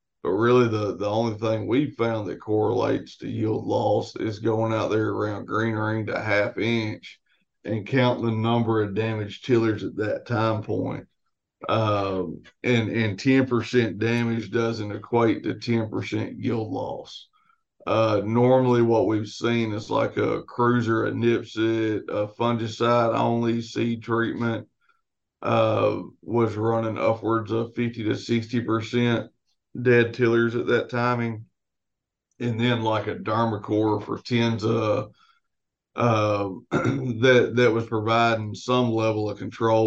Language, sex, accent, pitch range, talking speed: English, male, American, 110-120 Hz, 135 wpm